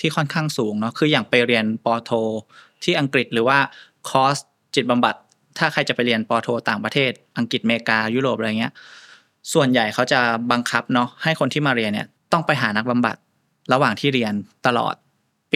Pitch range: 115-140 Hz